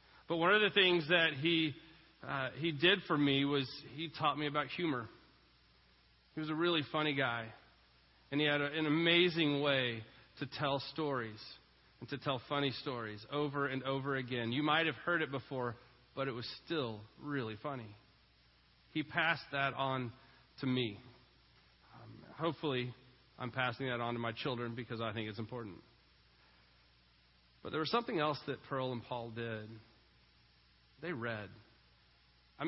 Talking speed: 160 wpm